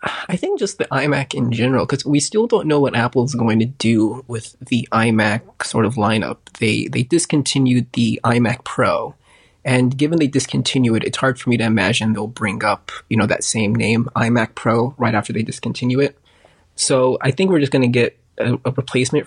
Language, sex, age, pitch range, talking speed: English, male, 20-39, 115-135 Hz, 205 wpm